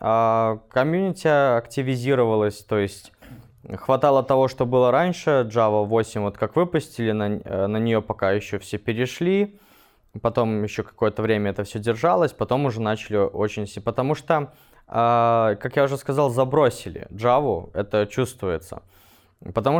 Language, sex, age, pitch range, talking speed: Russian, male, 20-39, 110-140 Hz, 130 wpm